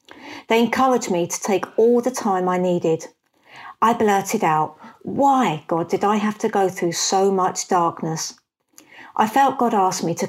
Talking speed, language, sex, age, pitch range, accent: 175 wpm, Danish, female, 50-69, 170-215 Hz, British